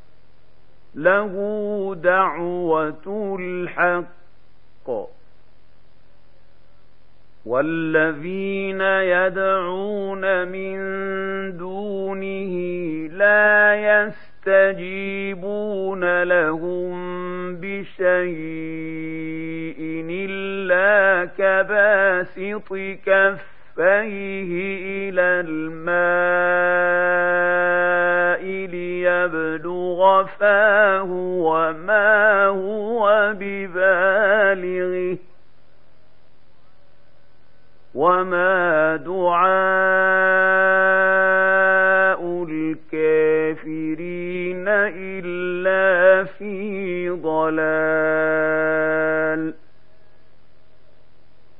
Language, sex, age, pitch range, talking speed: Arabic, male, 50-69, 160-195 Hz, 30 wpm